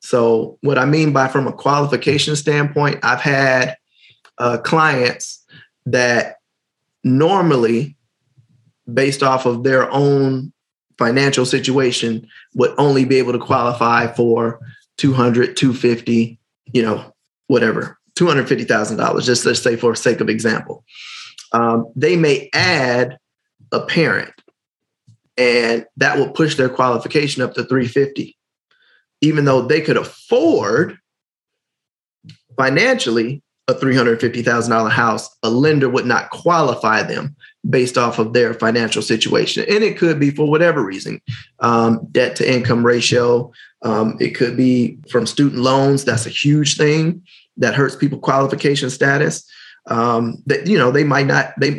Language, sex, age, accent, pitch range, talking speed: English, male, 20-39, American, 120-145 Hz, 140 wpm